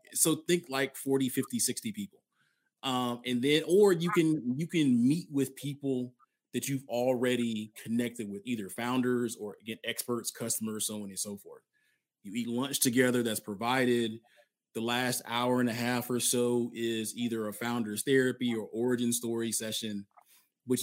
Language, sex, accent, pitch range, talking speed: English, male, American, 115-135 Hz, 165 wpm